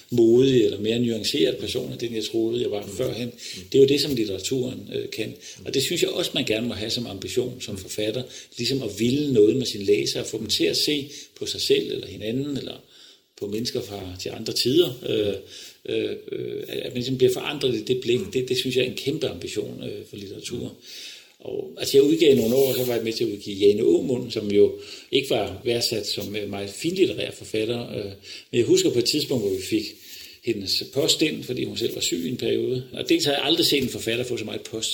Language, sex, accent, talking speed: Danish, male, native, 230 wpm